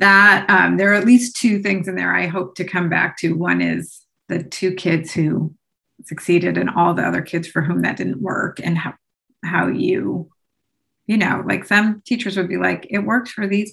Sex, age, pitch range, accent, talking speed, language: female, 30-49, 185-215 Hz, American, 215 wpm, English